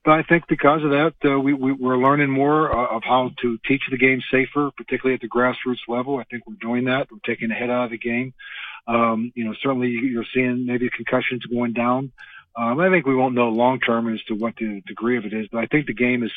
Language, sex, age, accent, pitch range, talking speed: English, male, 40-59, American, 115-130 Hz, 255 wpm